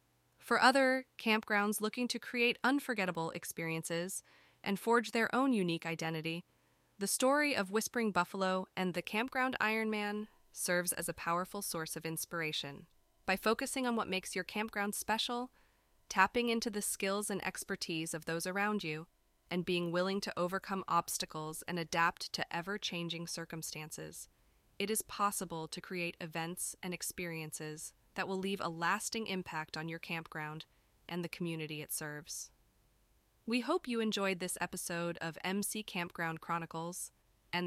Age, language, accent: 20-39, English, American